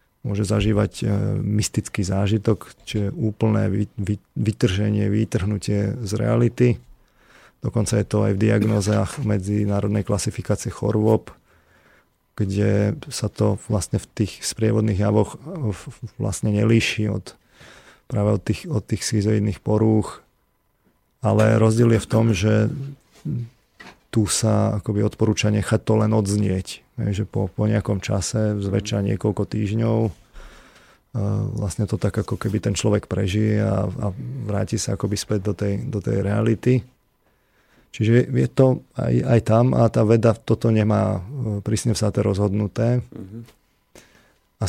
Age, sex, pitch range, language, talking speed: 40-59, male, 105-115 Hz, Slovak, 130 wpm